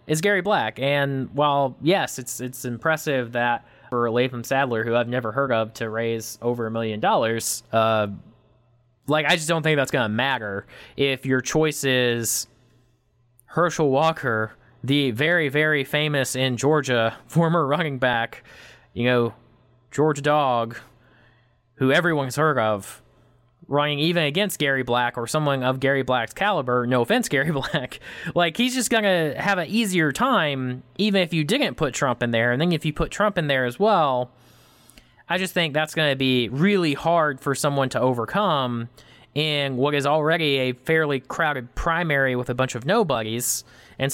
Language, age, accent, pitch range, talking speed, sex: English, 20-39, American, 125-155 Hz, 170 wpm, male